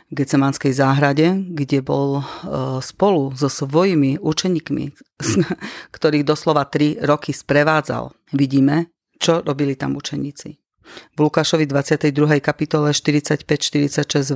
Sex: female